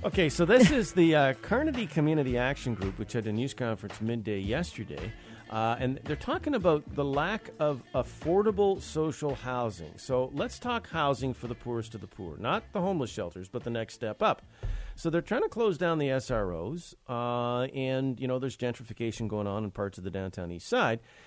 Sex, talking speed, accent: male, 200 wpm, American